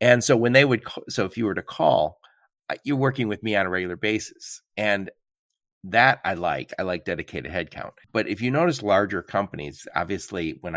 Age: 50-69